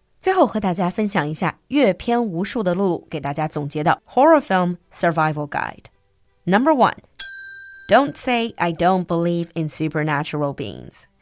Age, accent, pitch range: 20-39, American, 160-235 Hz